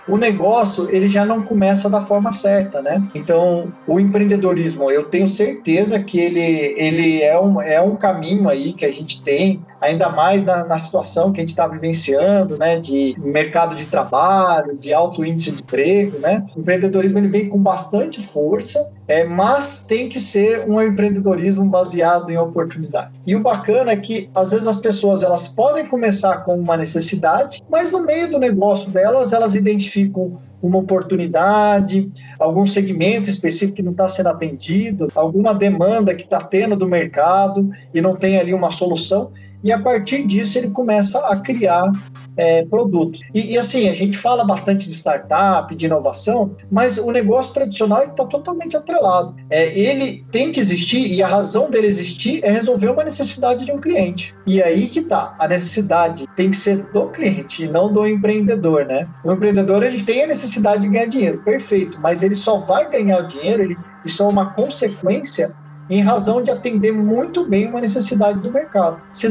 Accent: Brazilian